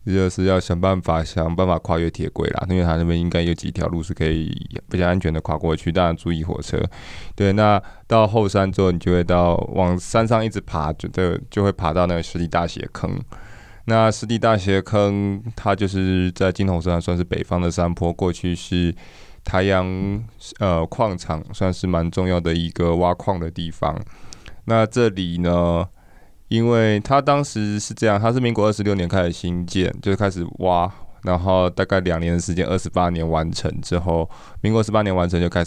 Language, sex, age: Chinese, male, 20-39